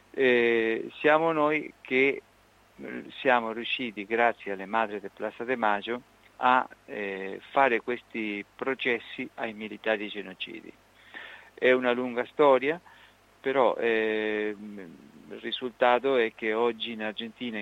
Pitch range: 105-120 Hz